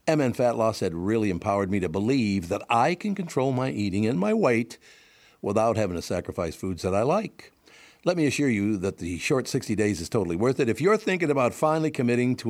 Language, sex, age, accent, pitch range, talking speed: English, male, 60-79, American, 95-130 Hz, 220 wpm